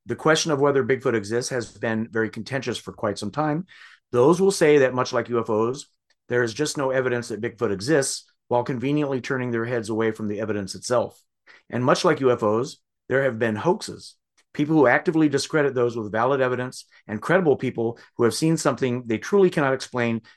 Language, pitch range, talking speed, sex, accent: English, 115-145 Hz, 195 wpm, male, American